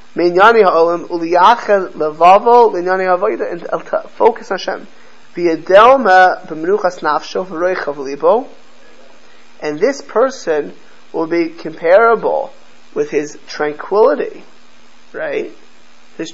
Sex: male